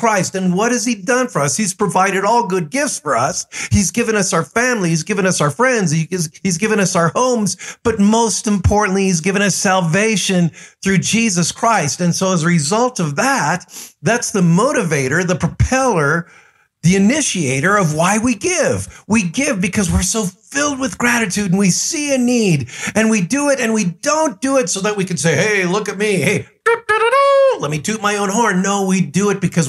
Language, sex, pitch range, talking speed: English, male, 165-220 Hz, 205 wpm